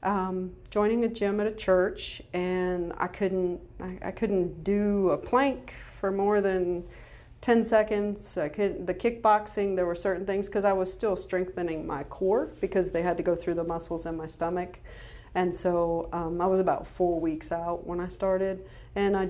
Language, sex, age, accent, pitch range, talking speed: English, female, 40-59, American, 165-195 Hz, 190 wpm